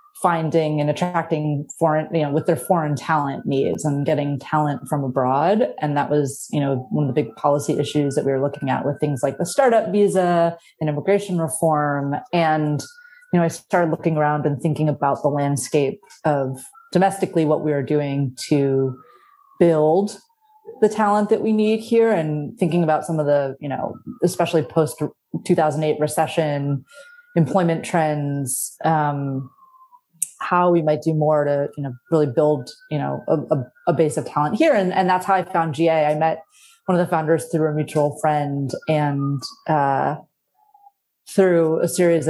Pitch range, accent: 150-190 Hz, American